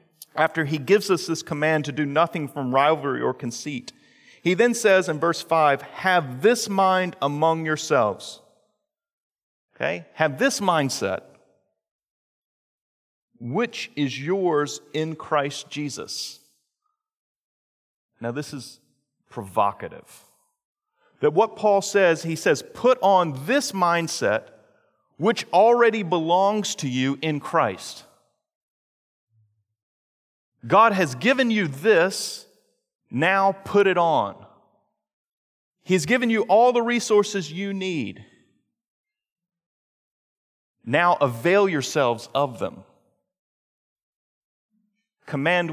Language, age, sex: English, 40-59, male